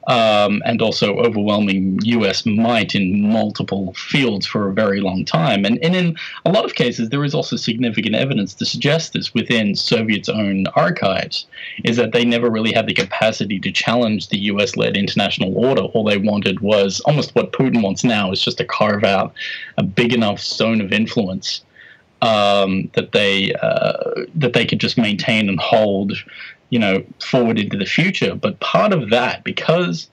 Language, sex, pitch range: English, male, 100-120 Hz